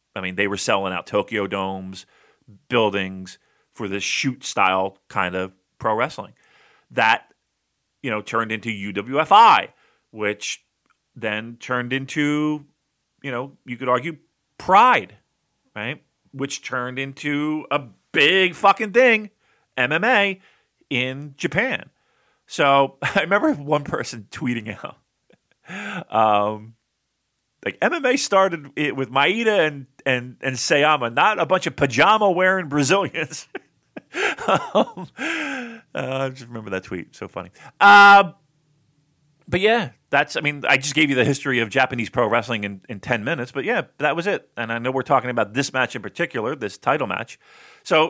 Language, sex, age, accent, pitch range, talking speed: English, male, 40-59, American, 115-160 Hz, 145 wpm